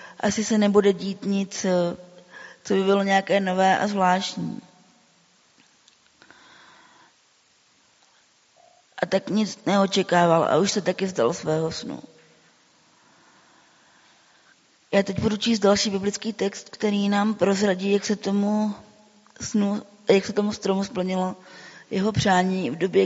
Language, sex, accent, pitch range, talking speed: Czech, female, native, 185-210 Hz, 120 wpm